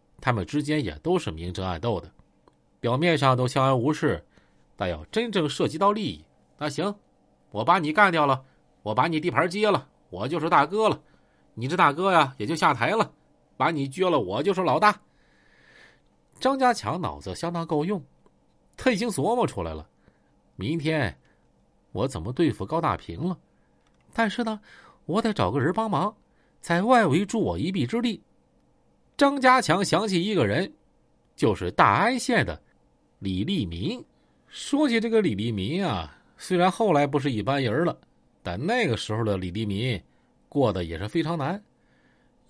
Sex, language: male, Chinese